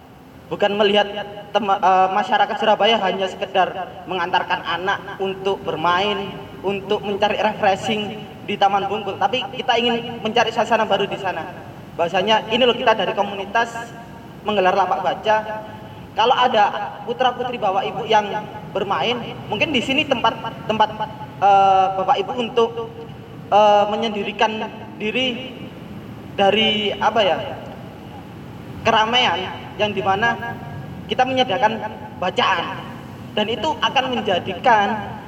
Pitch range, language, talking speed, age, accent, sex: 195-230 Hz, Indonesian, 115 wpm, 20-39, native, male